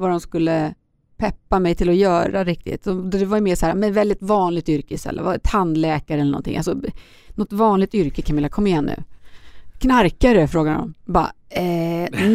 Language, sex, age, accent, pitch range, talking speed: Swedish, female, 30-49, native, 170-215 Hz, 170 wpm